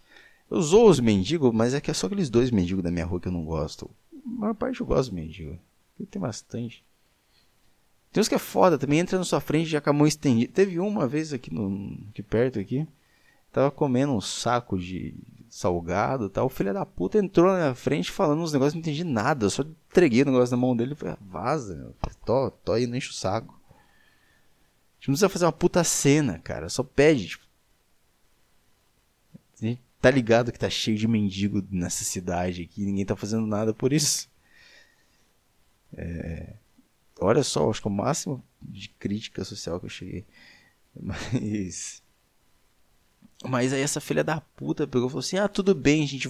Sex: male